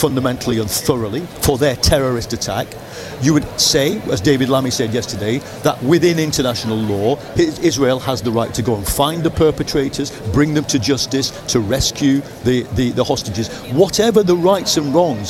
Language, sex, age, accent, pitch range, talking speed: English, male, 50-69, British, 120-160 Hz, 175 wpm